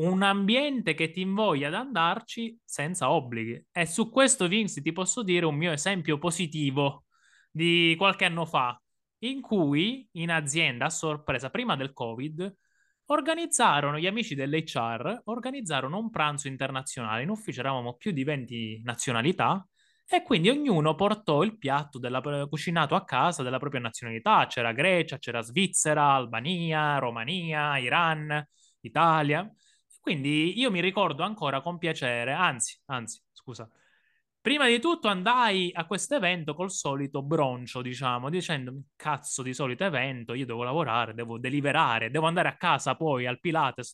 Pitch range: 130-185 Hz